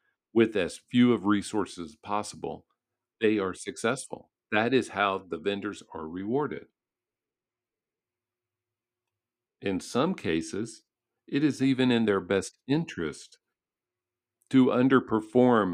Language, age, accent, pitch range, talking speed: English, 50-69, American, 100-120 Hz, 110 wpm